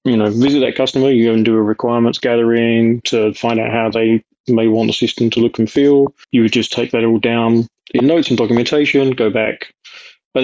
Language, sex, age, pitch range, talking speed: English, male, 20-39, 105-120 Hz, 225 wpm